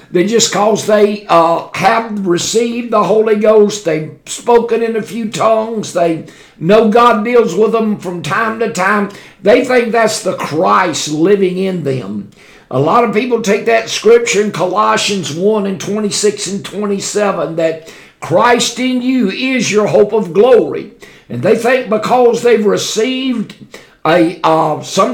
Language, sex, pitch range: English, male, 185-235 Hz